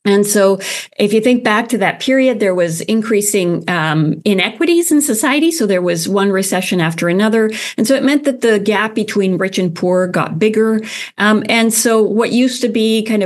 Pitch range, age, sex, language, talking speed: 180-225 Hz, 40-59, female, English, 200 wpm